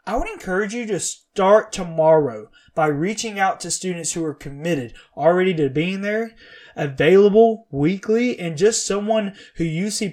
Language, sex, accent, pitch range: English, male, American, 165-210 Hz